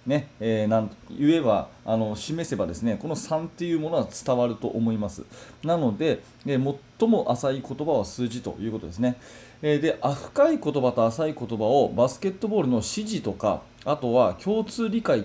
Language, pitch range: Japanese, 115-170 Hz